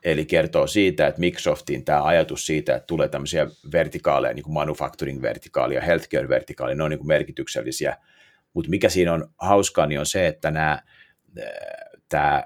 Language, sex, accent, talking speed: Finnish, male, native, 160 wpm